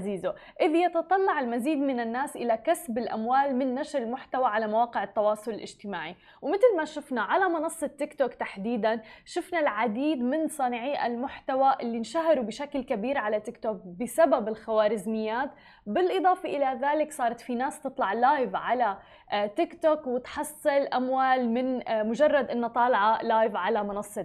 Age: 20-39